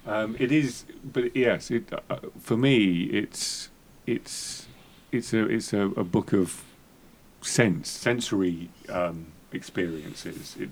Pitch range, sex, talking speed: 90-120 Hz, male, 130 wpm